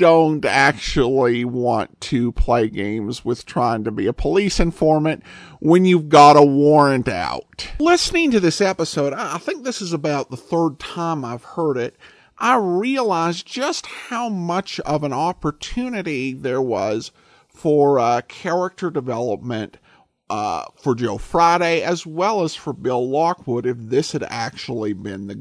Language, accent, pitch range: English, American, 120-180 Hz